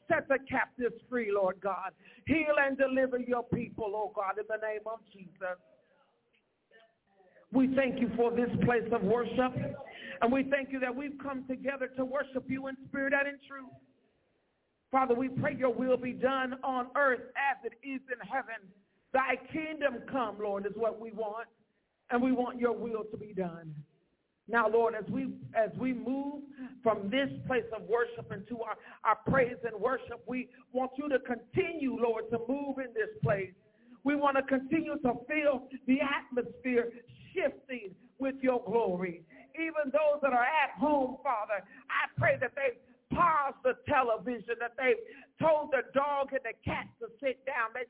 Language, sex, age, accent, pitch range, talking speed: English, male, 50-69, American, 225-275 Hz, 175 wpm